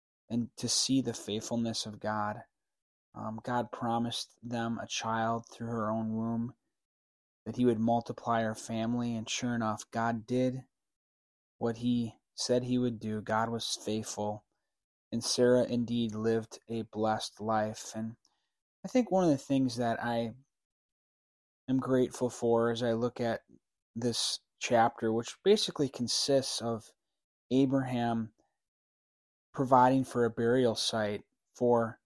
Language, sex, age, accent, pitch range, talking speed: English, male, 20-39, American, 115-125 Hz, 135 wpm